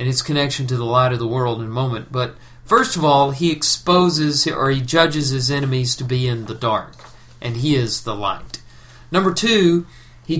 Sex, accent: male, American